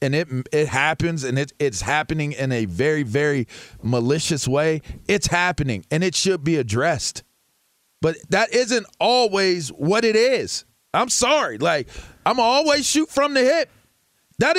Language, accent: English, American